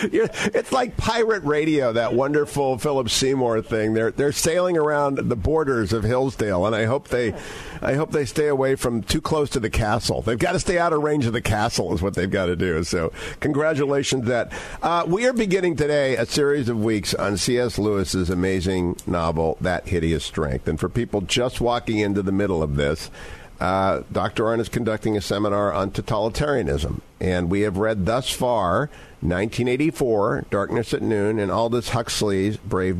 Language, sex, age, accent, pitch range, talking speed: English, male, 50-69, American, 105-145 Hz, 185 wpm